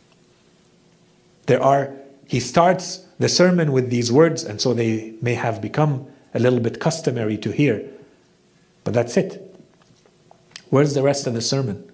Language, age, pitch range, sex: English, 50-69, 120-155 Hz, male